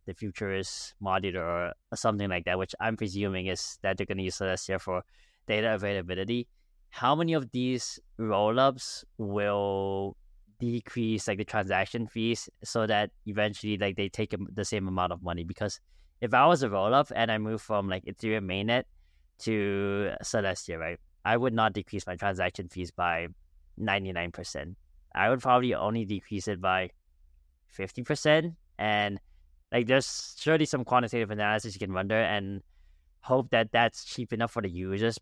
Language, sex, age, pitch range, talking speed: English, male, 20-39, 90-110 Hz, 165 wpm